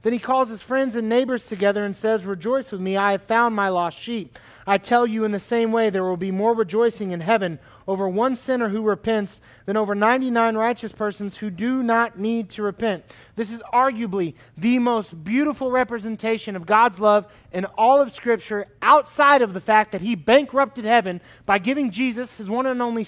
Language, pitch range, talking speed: English, 190-235 Hz, 205 wpm